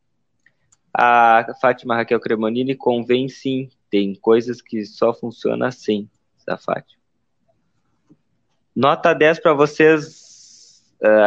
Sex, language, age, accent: male, Portuguese, 20-39, Brazilian